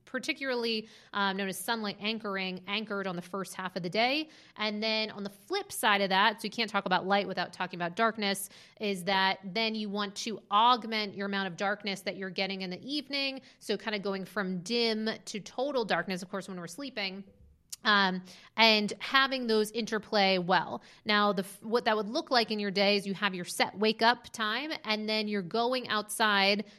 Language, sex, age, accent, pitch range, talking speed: English, female, 30-49, American, 190-220 Hz, 205 wpm